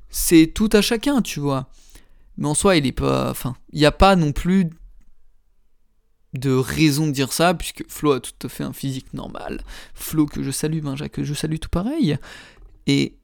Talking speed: 190 wpm